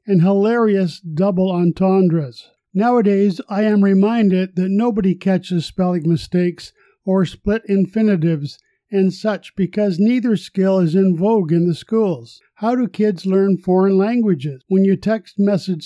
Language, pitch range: English, 175-205 Hz